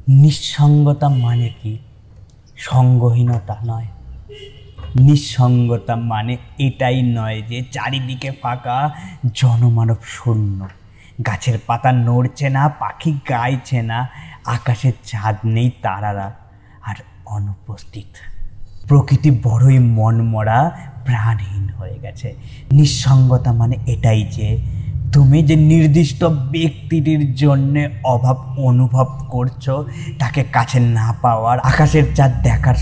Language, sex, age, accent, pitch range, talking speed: Bengali, male, 20-39, native, 110-135 Hz, 95 wpm